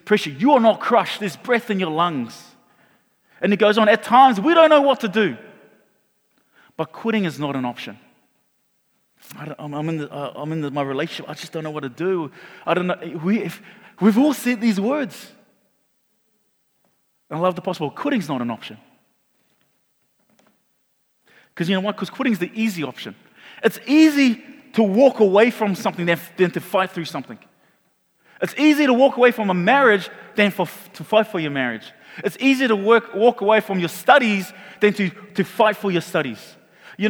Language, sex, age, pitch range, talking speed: English, male, 30-49, 150-215 Hz, 190 wpm